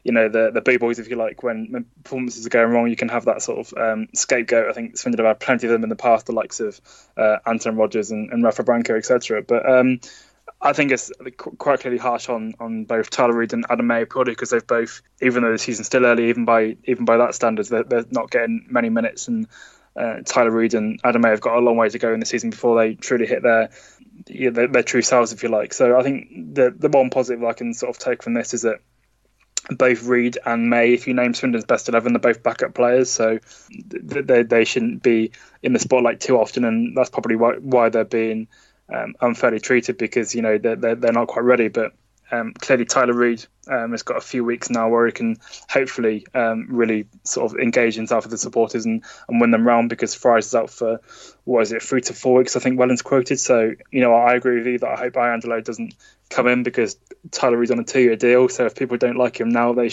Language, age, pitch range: English, 10-29, 115-125 Hz